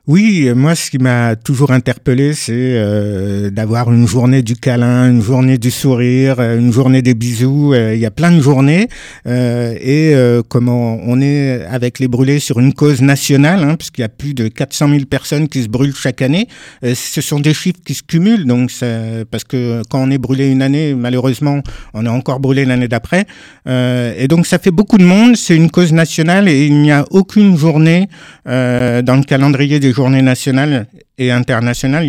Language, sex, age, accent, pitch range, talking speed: French, male, 50-69, French, 125-150 Hz, 205 wpm